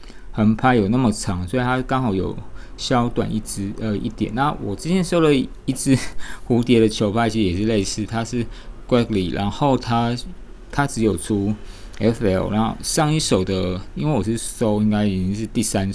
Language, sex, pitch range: Chinese, male, 100-120 Hz